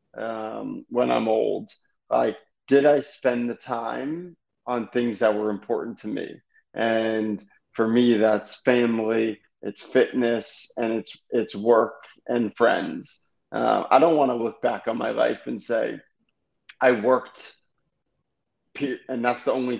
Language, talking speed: English, 145 wpm